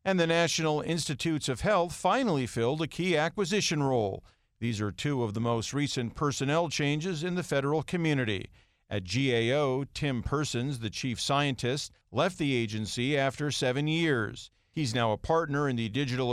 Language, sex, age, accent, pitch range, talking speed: English, male, 50-69, American, 120-155 Hz, 165 wpm